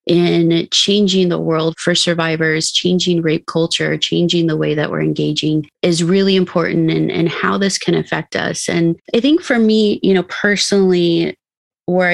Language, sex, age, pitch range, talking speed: English, female, 30-49, 165-190 Hz, 165 wpm